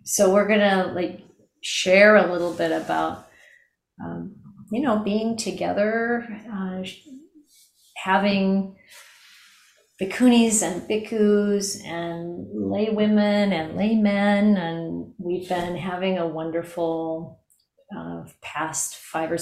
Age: 30-49